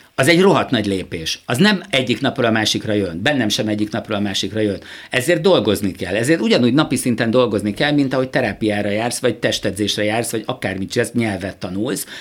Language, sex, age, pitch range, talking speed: Hungarian, male, 50-69, 105-135 Hz, 195 wpm